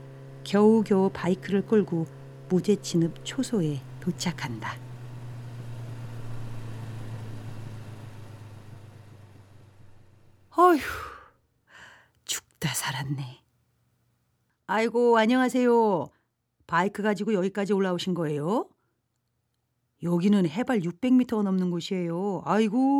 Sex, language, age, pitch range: female, Korean, 40-59, 125-195 Hz